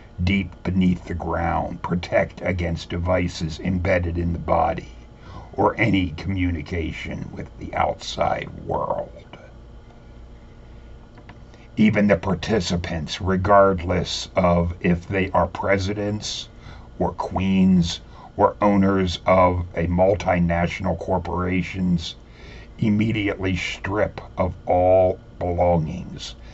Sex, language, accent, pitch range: male, English, American, 85-95 Hz